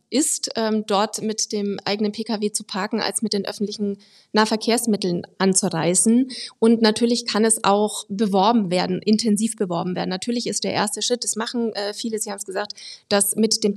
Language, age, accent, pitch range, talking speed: German, 30-49, German, 205-235 Hz, 170 wpm